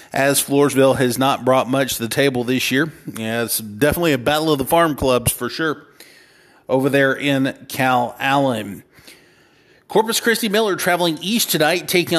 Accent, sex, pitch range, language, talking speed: American, male, 130-155 Hz, English, 165 wpm